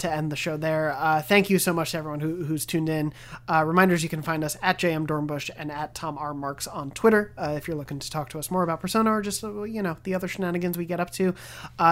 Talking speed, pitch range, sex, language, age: 275 wpm, 150-180 Hz, male, English, 30-49